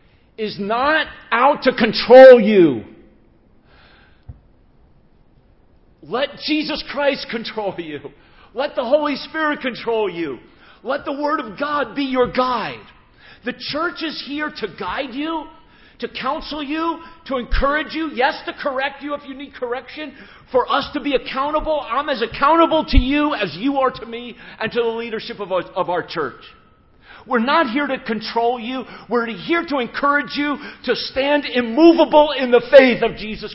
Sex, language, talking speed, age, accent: male, English, 155 wpm, 50-69, American